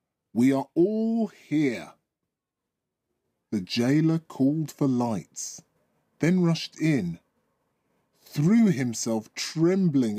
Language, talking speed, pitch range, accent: English, 90 wpm, 115-170 Hz, British